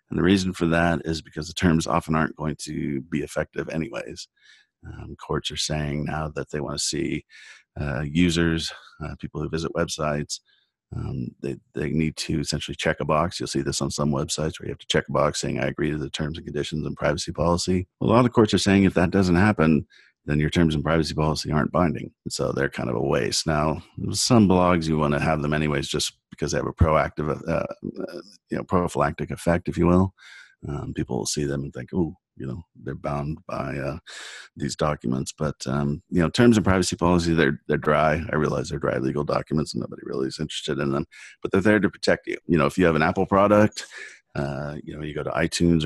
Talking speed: 230 wpm